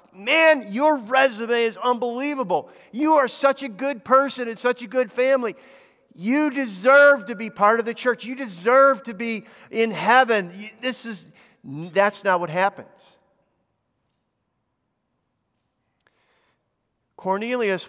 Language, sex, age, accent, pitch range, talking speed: English, male, 50-69, American, 180-255 Hz, 125 wpm